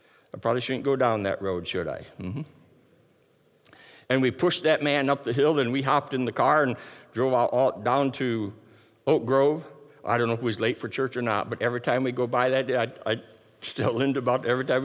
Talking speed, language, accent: 225 wpm, English, American